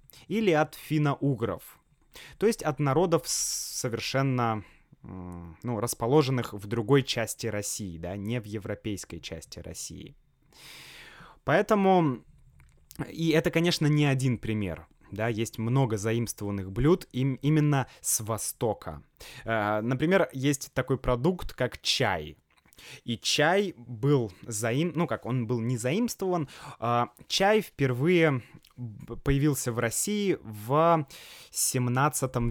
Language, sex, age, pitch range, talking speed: Russian, male, 20-39, 105-145 Hz, 110 wpm